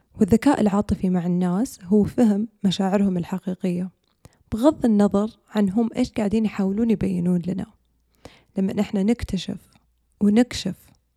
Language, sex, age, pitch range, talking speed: Arabic, female, 20-39, 190-215 Hz, 115 wpm